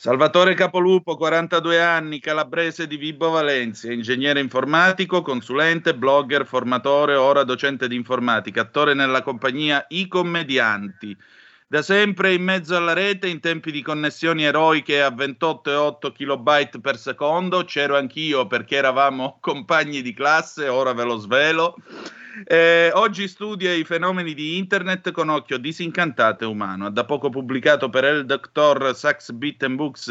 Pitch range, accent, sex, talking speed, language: 130-165 Hz, native, male, 140 wpm, Italian